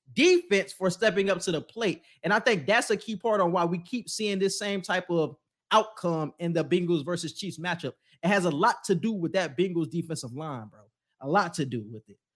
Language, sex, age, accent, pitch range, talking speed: English, male, 20-39, American, 165-215 Hz, 235 wpm